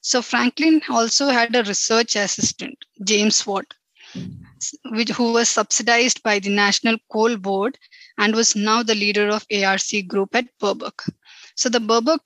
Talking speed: 150 wpm